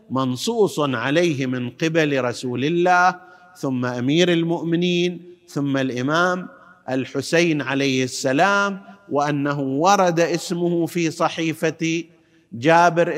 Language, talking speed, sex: Arabic, 90 wpm, male